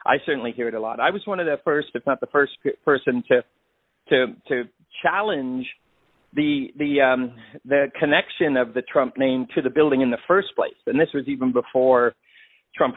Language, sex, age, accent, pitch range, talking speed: English, male, 40-59, American, 130-165 Hz, 200 wpm